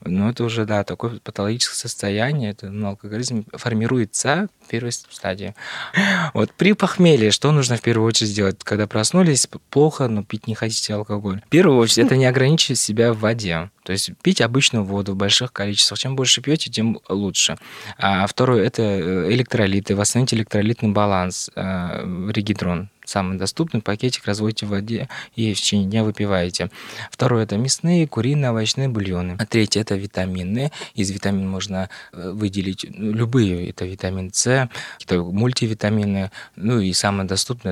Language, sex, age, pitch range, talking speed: Russian, male, 20-39, 95-120 Hz, 155 wpm